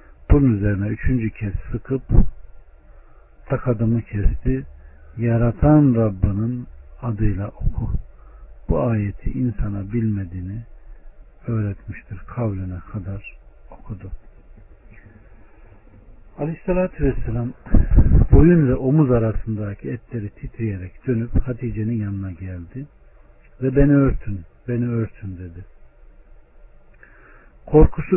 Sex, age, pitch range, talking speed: male, 60-79, 95-125 Hz, 80 wpm